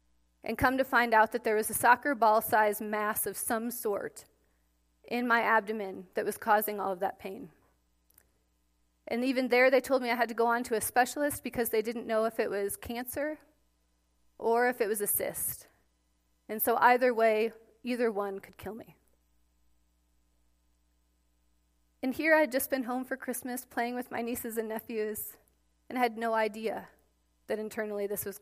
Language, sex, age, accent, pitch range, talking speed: English, female, 30-49, American, 170-240 Hz, 180 wpm